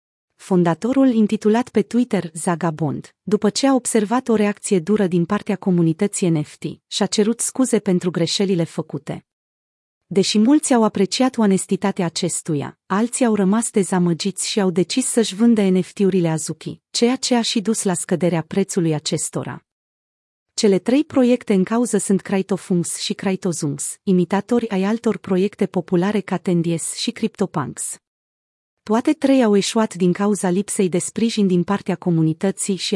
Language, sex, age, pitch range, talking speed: Romanian, female, 30-49, 175-220 Hz, 145 wpm